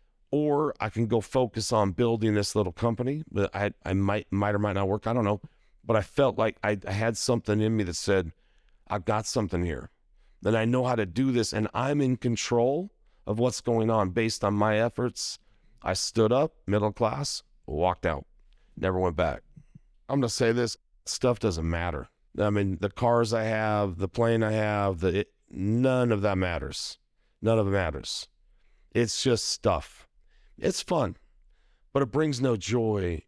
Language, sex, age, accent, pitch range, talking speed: English, male, 40-59, American, 100-120 Hz, 185 wpm